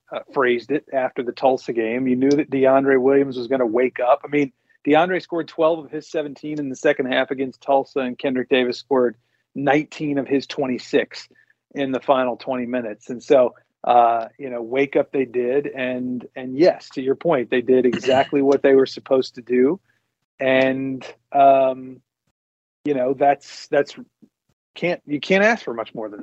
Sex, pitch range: male, 125-150 Hz